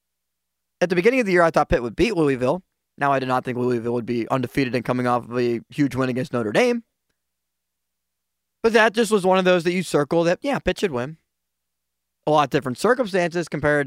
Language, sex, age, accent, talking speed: English, male, 20-39, American, 225 wpm